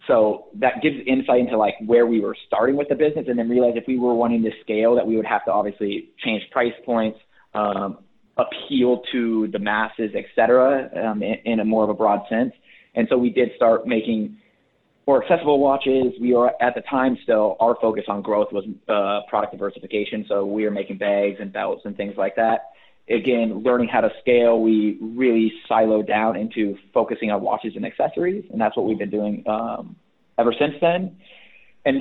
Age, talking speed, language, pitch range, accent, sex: 20-39, 200 wpm, English, 110-135 Hz, American, male